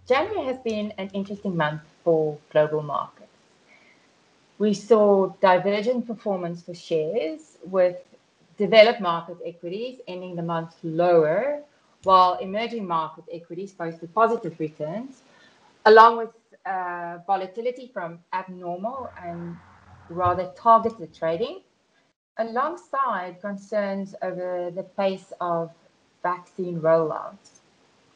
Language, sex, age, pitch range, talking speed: English, female, 30-49, 170-210 Hz, 100 wpm